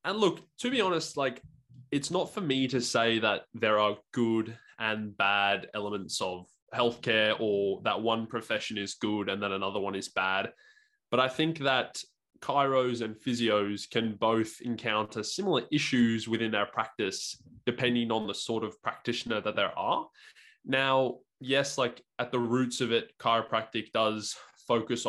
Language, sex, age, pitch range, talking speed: English, male, 20-39, 105-125 Hz, 165 wpm